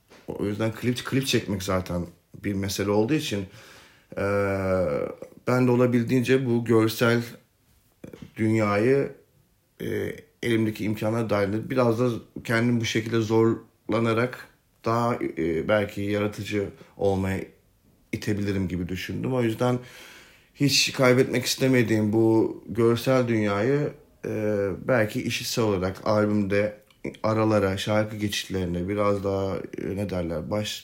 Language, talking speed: Turkish, 110 wpm